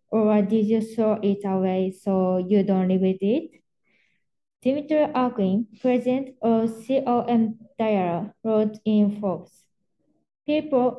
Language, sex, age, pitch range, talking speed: English, female, 20-39, 210-255 Hz, 120 wpm